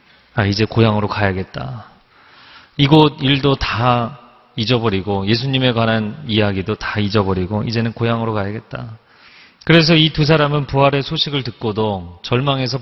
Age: 40-59